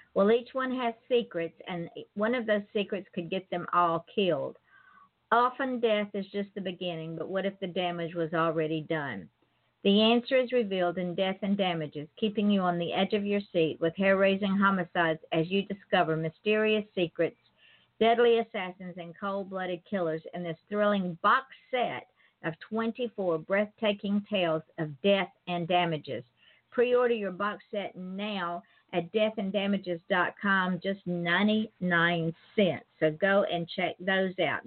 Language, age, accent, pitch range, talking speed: English, 50-69, American, 175-215 Hz, 150 wpm